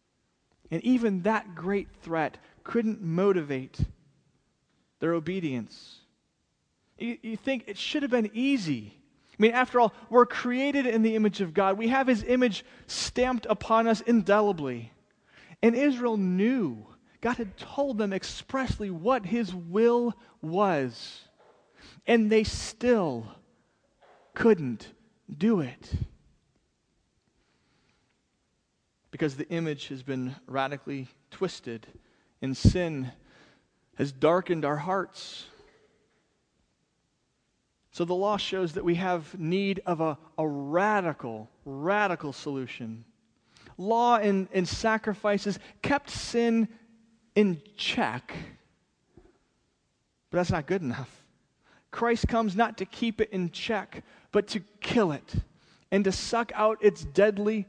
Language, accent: English, American